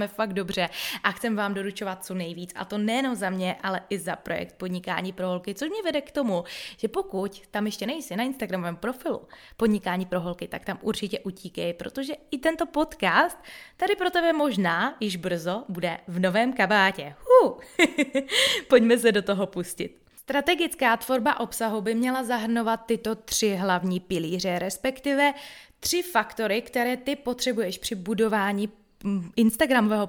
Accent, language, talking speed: native, Czech, 155 wpm